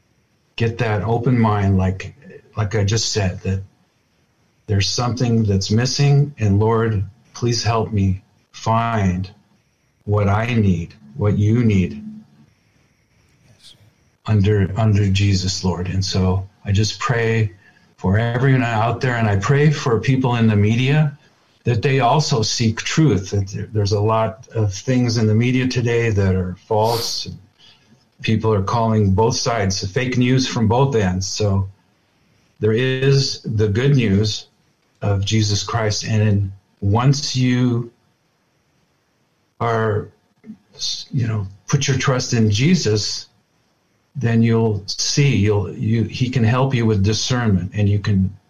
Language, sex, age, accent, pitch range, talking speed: English, male, 50-69, American, 100-125 Hz, 135 wpm